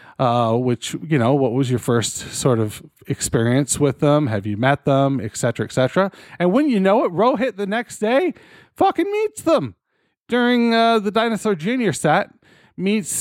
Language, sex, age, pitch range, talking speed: English, male, 40-59, 130-195 Hz, 175 wpm